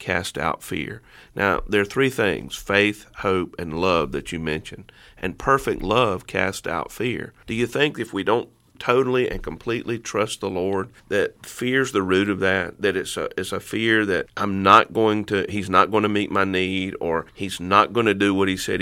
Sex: male